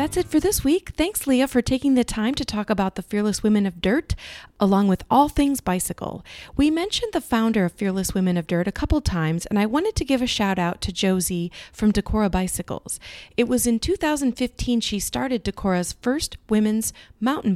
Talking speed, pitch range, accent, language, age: 200 wpm, 185-260 Hz, American, English, 40-59